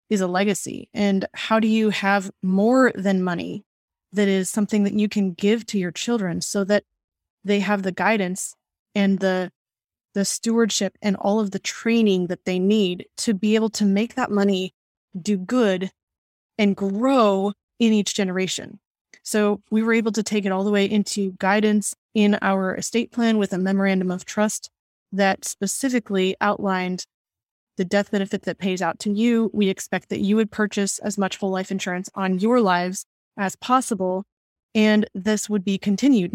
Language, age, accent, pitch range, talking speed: English, 20-39, American, 195-225 Hz, 175 wpm